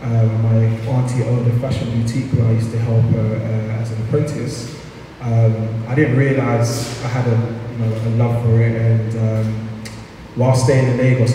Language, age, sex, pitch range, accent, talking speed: English, 20-39, male, 115-125 Hz, British, 190 wpm